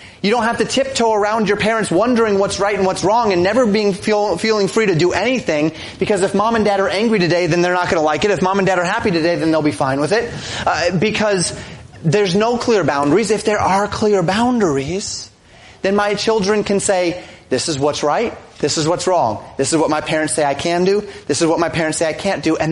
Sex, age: male, 30-49